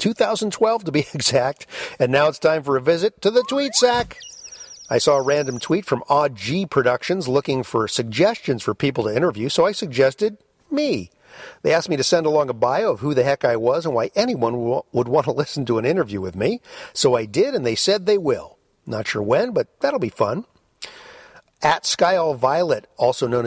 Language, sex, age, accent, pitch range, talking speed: English, male, 50-69, American, 120-190 Hz, 210 wpm